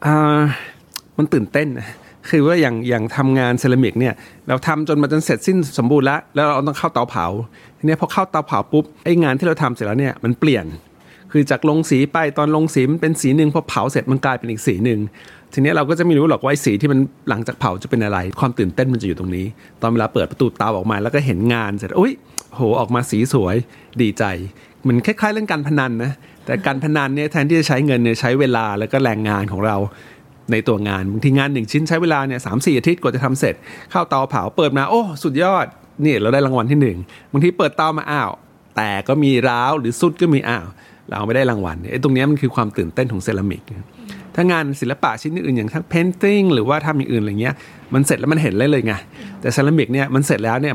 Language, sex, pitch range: Thai, male, 115-150 Hz